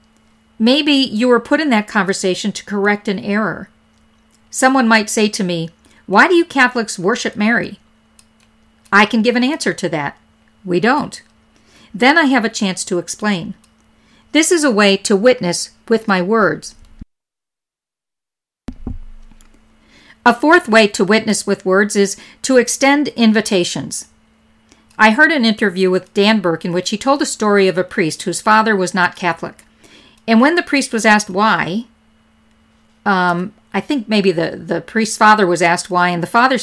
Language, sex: English, female